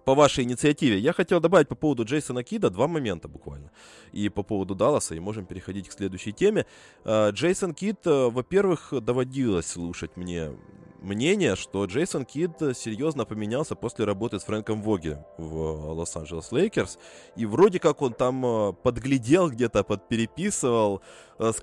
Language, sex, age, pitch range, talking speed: Russian, male, 20-39, 90-125 Hz, 145 wpm